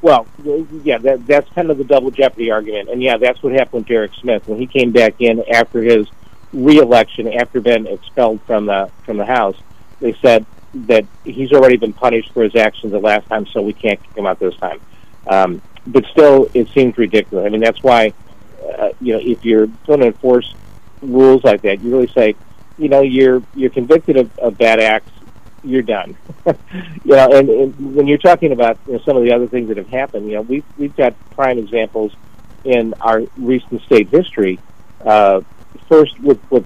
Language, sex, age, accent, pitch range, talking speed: English, male, 50-69, American, 105-130 Hz, 195 wpm